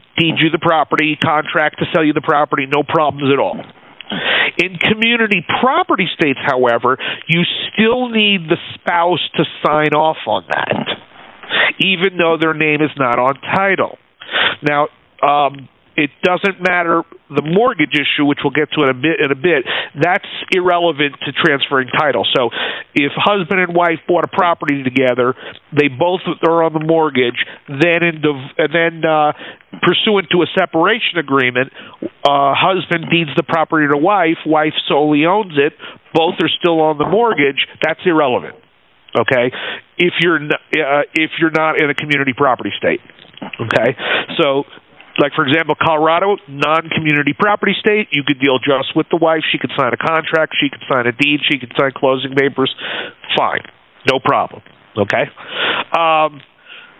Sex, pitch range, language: male, 145-170 Hz, English